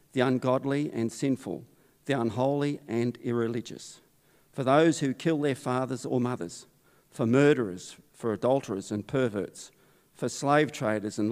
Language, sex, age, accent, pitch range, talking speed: English, male, 50-69, Australian, 115-135 Hz, 140 wpm